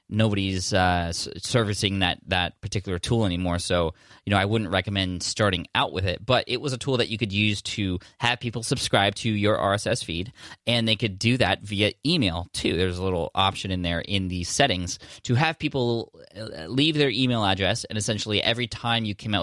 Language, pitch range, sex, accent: English, 95-120 Hz, male, American